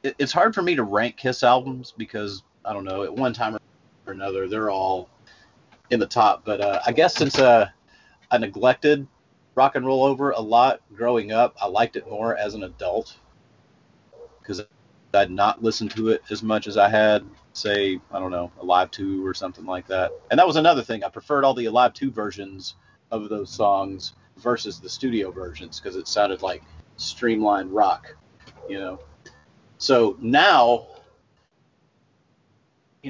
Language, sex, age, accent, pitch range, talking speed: English, male, 40-59, American, 95-120 Hz, 175 wpm